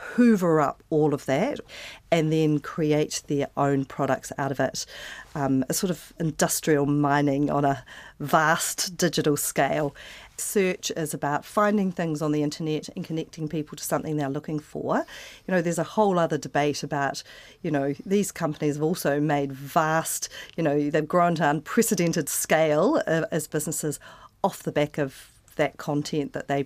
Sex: female